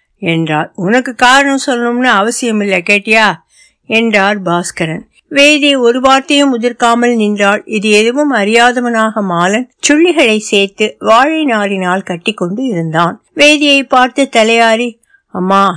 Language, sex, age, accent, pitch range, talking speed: Tamil, female, 60-79, native, 190-270 Hz, 85 wpm